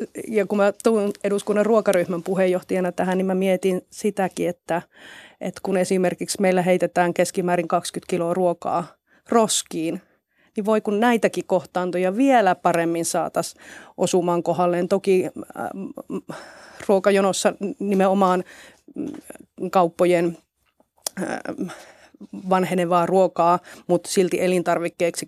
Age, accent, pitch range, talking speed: 30-49, native, 175-195 Hz, 105 wpm